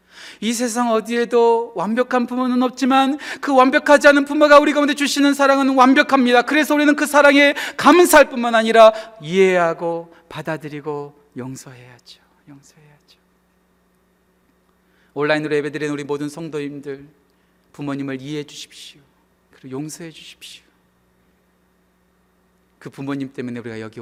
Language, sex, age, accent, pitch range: Korean, male, 40-59, native, 155-230 Hz